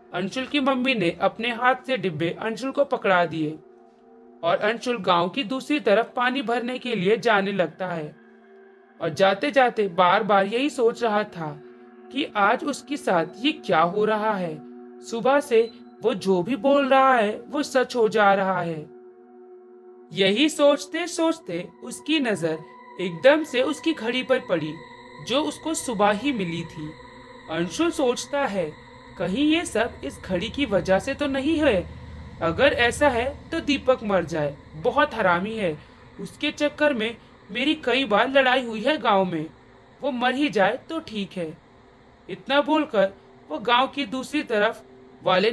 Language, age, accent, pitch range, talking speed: Hindi, 40-59, native, 180-265 Hz, 140 wpm